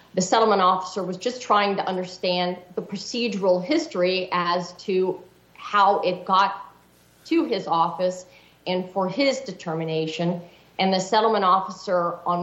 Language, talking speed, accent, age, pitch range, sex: English, 135 wpm, American, 40-59, 170-195 Hz, female